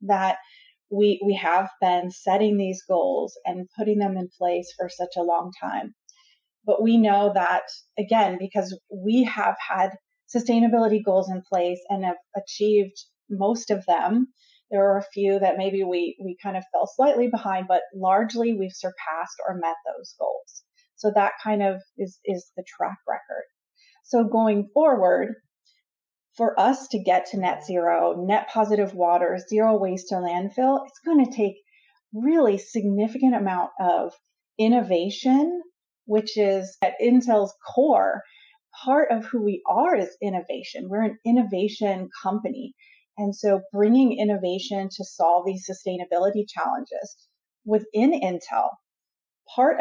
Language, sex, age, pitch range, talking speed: English, female, 30-49, 190-250 Hz, 145 wpm